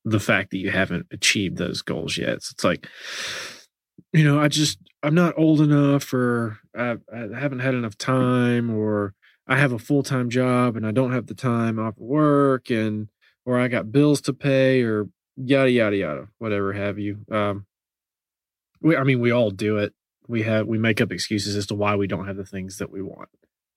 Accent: American